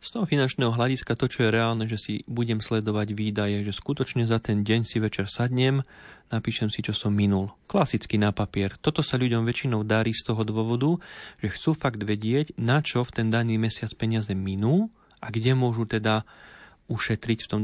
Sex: male